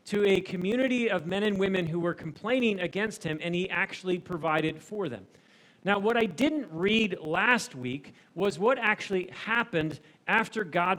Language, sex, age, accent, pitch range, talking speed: English, male, 40-59, American, 155-210 Hz, 170 wpm